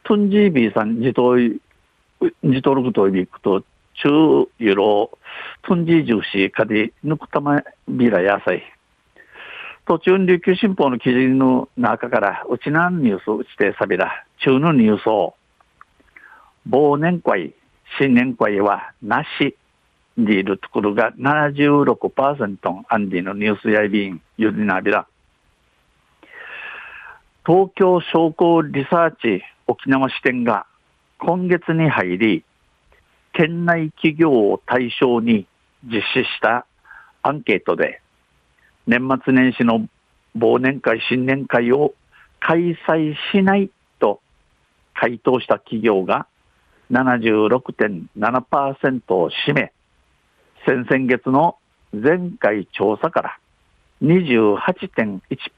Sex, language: male, Japanese